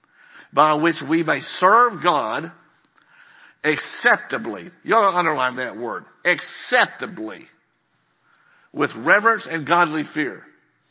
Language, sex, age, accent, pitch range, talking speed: English, male, 60-79, American, 155-215 Hz, 105 wpm